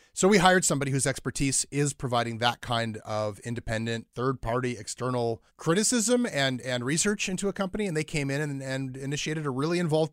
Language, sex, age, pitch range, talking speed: English, male, 30-49, 115-145 Hz, 190 wpm